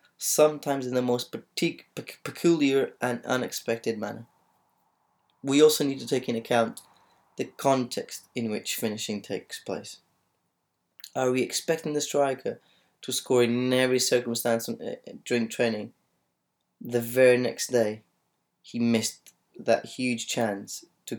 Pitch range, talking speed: 105-125 Hz, 125 wpm